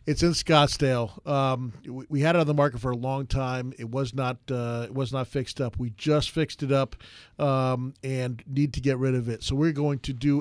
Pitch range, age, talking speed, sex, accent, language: 130-150 Hz, 40-59, 235 wpm, male, American, English